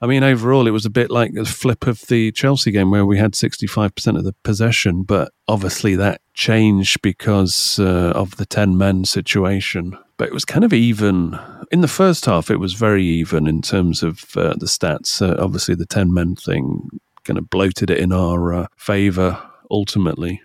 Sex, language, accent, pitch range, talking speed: male, English, British, 95-115 Hz, 200 wpm